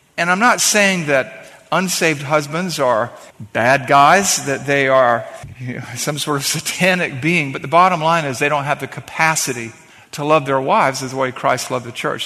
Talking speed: 190 wpm